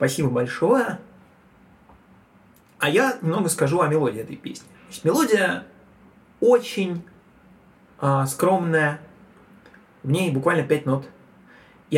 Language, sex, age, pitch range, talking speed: Russian, male, 20-39, 140-185 Hz, 100 wpm